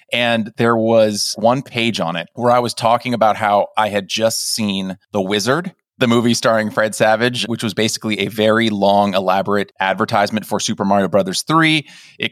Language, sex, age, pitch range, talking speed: English, male, 30-49, 100-120 Hz, 185 wpm